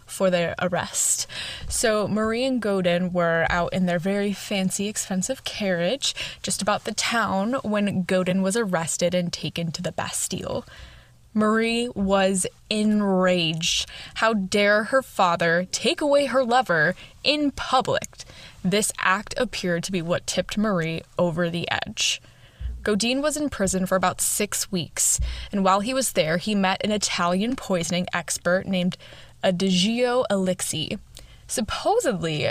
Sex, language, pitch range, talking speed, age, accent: female, English, 175-215 Hz, 140 wpm, 10-29, American